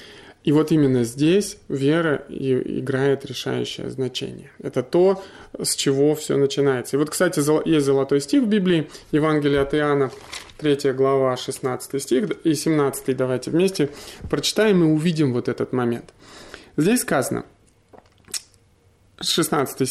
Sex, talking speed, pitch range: male, 125 wpm, 130-160 Hz